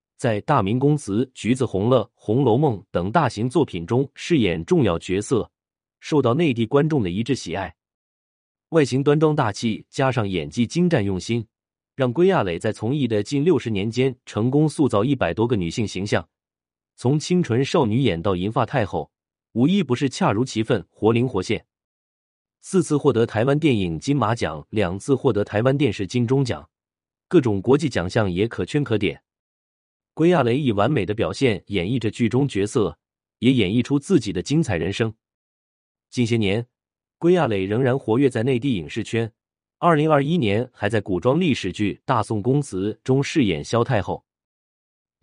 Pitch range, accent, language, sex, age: 100-140 Hz, native, Chinese, male, 30-49